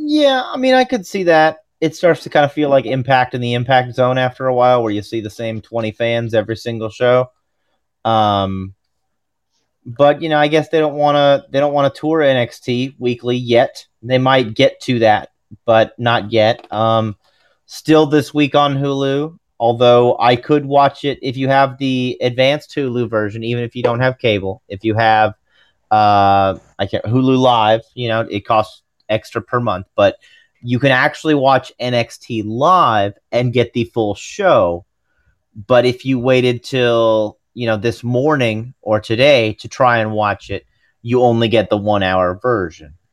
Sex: male